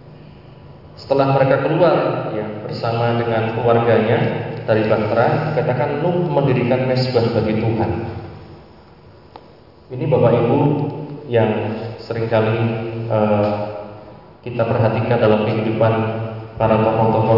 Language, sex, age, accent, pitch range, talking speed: Indonesian, male, 20-39, native, 110-125 Hz, 95 wpm